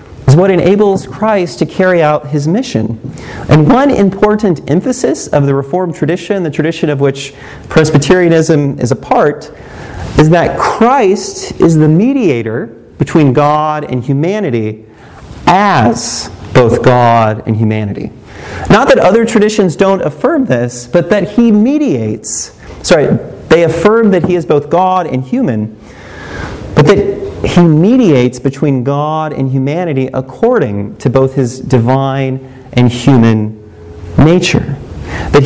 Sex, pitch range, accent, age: male, 120-175 Hz, American, 40-59